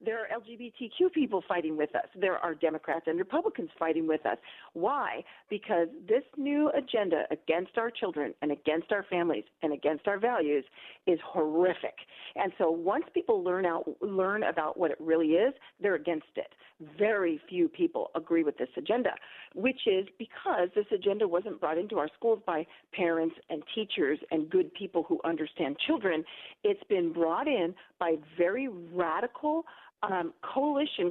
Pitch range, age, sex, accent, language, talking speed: 170-280 Hz, 40-59, female, American, English, 160 wpm